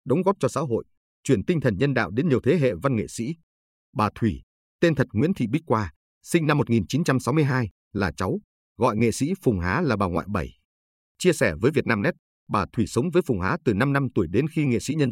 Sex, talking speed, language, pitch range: male, 230 wpm, Vietnamese, 85-135 Hz